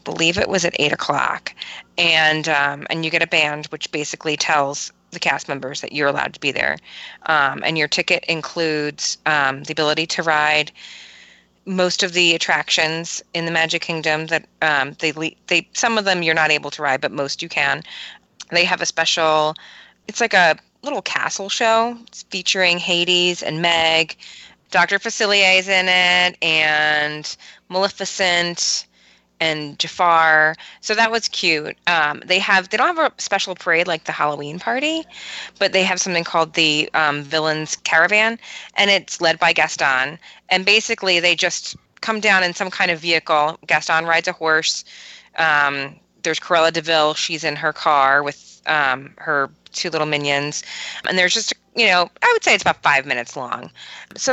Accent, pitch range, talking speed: American, 155-185 Hz, 175 wpm